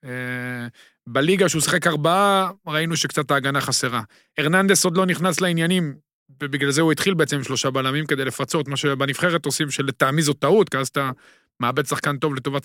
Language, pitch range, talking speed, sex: Hebrew, 145-200 Hz, 170 wpm, male